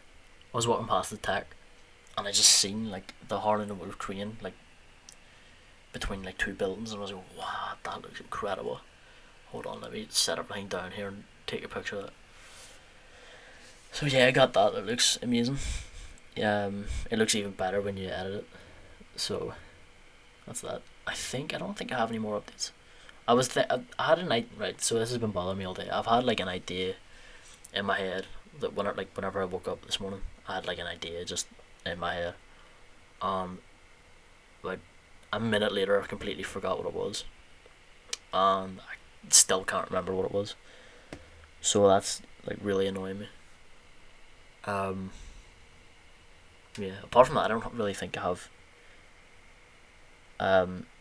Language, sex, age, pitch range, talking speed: English, male, 20-39, 90-105 Hz, 185 wpm